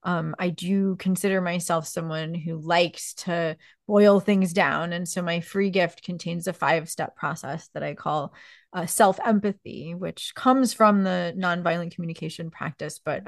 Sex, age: female, 30-49